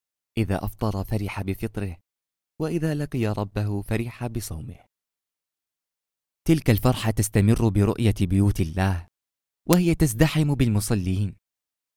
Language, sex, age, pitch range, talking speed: Arabic, male, 20-39, 90-120 Hz, 90 wpm